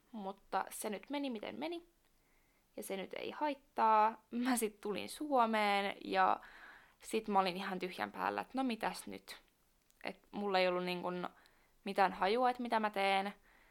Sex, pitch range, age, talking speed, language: female, 185-225 Hz, 20-39, 160 wpm, Finnish